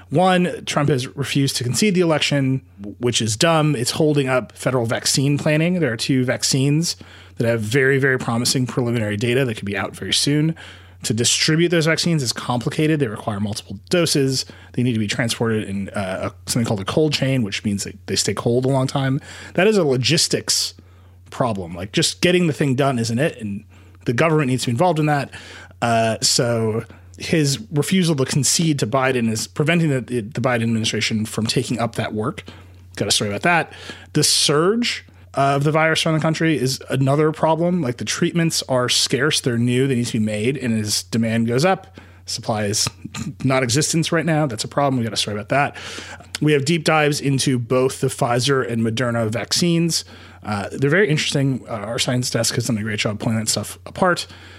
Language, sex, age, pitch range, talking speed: English, male, 30-49, 105-150 Hz, 195 wpm